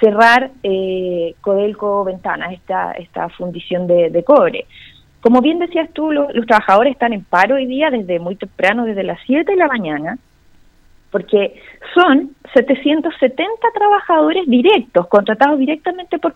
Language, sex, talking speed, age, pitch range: Spanish, female, 145 wpm, 30-49, 200-295 Hz